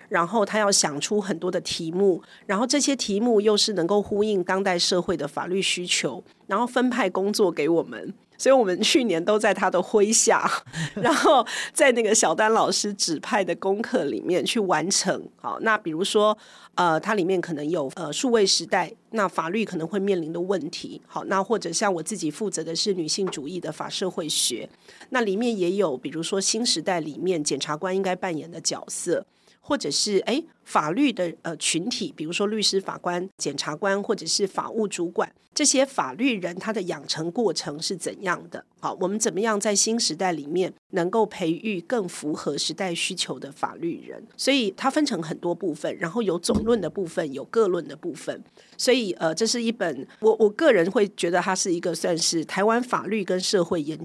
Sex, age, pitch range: female, 40-59, 175-220 Hz